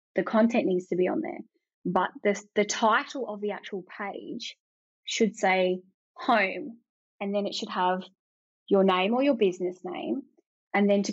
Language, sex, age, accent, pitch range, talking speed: English, female, 20-39, Australian, 180-210 Hz, 165 wpm